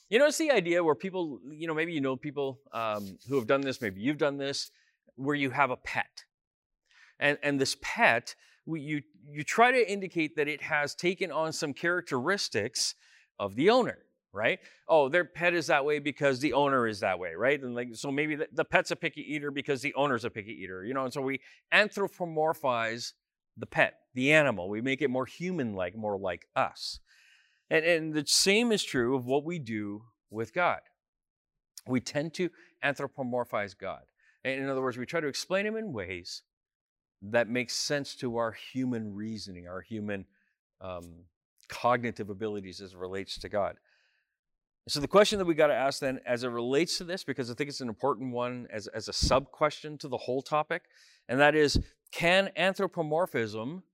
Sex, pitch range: male, 120-160 Hz